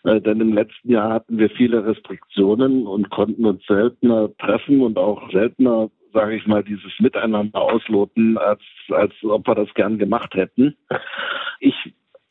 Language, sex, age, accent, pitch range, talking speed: German, male, 60-79, German, 105-130 Hz, 150 wpm